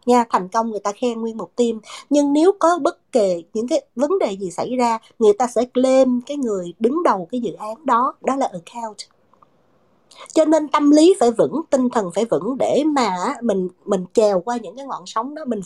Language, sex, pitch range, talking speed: Vietnamese, female, 230-310 Hz, 220 wpm